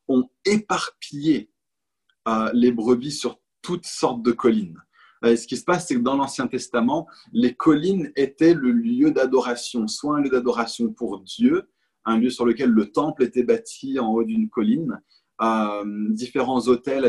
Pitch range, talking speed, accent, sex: 120-175 Hz, 165 wpm, French, male